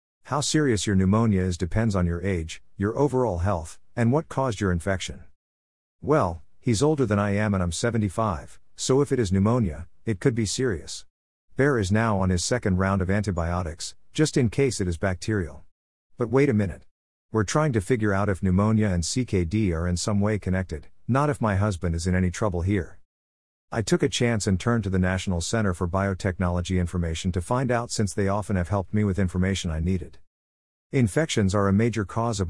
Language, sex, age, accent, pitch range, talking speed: English, male, 50-69, American, 90-115 Hz, 200 wpm